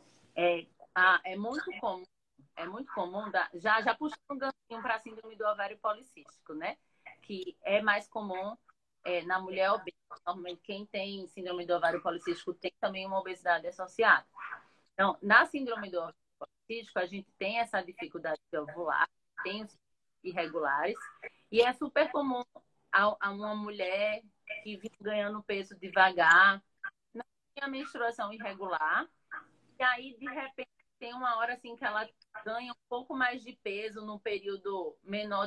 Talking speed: 160 wpm